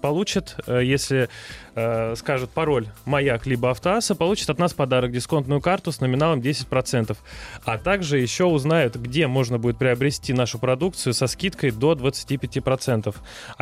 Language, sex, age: Russian, male, 20-39